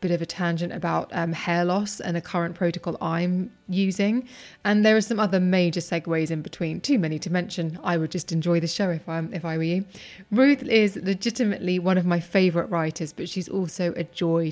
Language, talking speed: English, 215 wpm